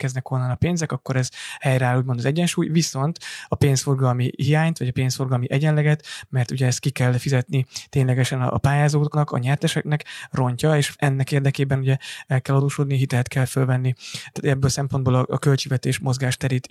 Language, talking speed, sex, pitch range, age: Hungarian, 170 wpm, male, 130-145 Hz, 20-39